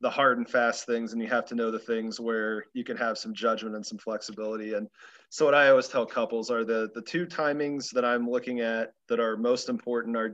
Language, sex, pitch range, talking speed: English, male, 110-130 Hz, 245 wpm